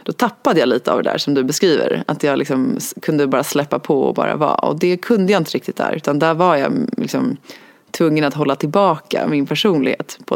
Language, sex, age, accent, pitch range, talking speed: Swedish, female, 30-49, native, 140-170 Hz, 225 wpm